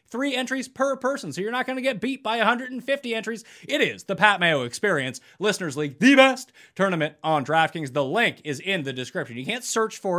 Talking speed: 220 wpm